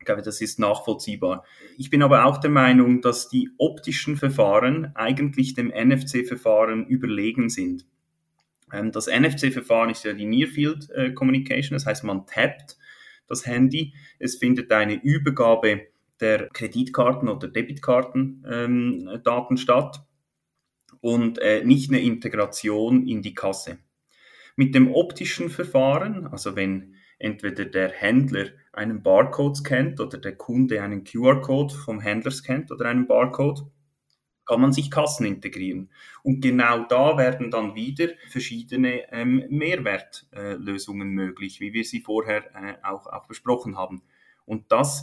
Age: 30-49